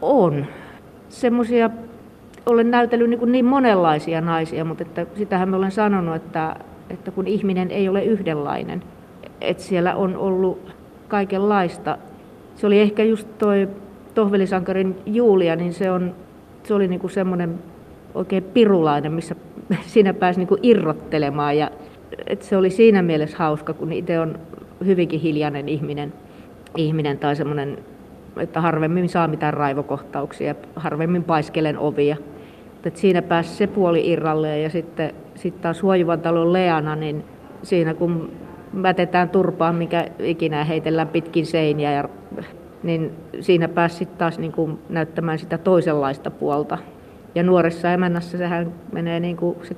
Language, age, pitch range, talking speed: Finnish, 30-49, 160-190 Hz, 130 wpm